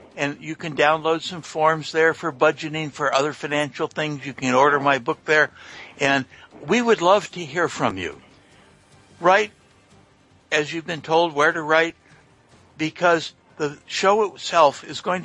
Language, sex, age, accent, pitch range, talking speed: English, male, 60-79, American, 145-170 Hz, 160 wpm